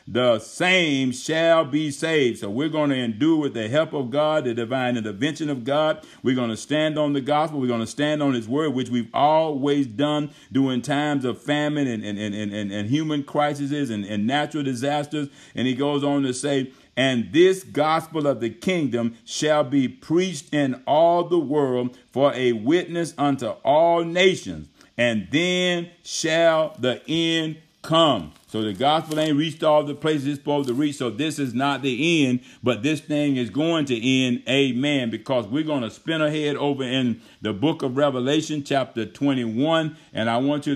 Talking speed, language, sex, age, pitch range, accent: 190 wpm, English, male, 50-69, 125-150 Hz, American